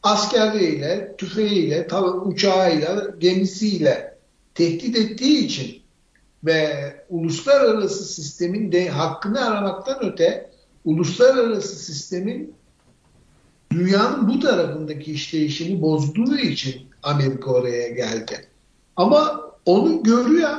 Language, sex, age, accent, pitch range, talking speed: Turkish, male, 60-79, native, 150-215 Hz, 80 wpm